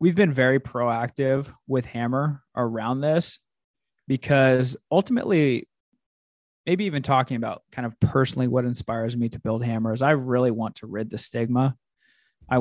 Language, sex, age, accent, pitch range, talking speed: English, male, 20-39, American, 115-135 Hz, 150 wpm